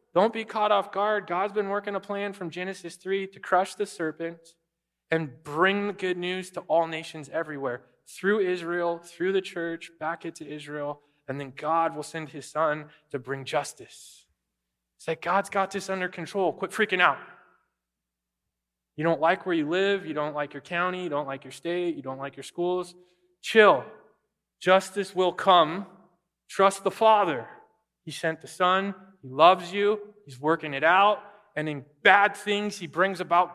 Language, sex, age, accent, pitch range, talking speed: English, male, 20-39, American, 155-200 Hz, 180 wpm